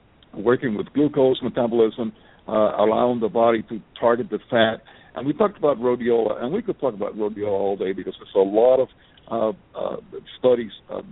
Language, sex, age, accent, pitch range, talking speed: English, male, 60-79, American, 110-135 Hz, 185 wpm